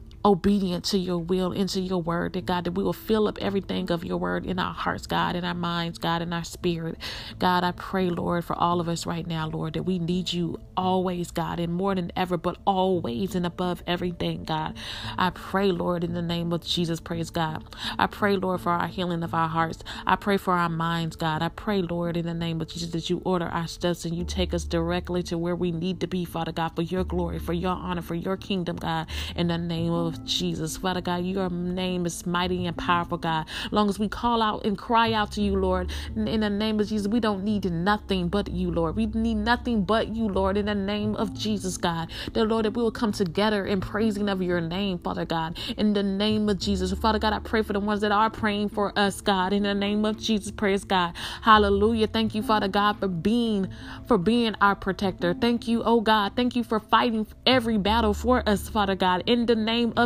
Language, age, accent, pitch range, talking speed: English, 30-49, American, 170-210 Hz, 235 wpm